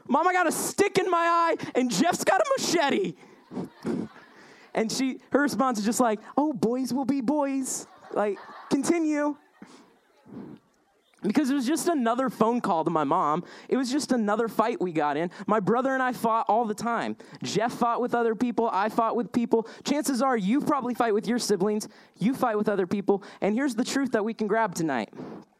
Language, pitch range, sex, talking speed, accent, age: English, 210-255 Hz, male, 195 wpm, American, 20-39